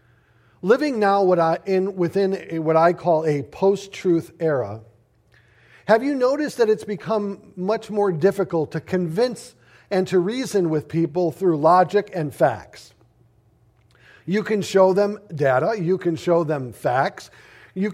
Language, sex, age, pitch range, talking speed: English, male, 50-69, 165-215 Hz, 135 wpm